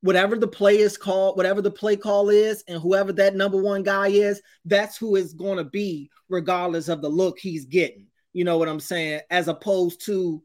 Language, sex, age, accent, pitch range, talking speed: English, male, 20-39, American, 150-180 Hz, 210 wpm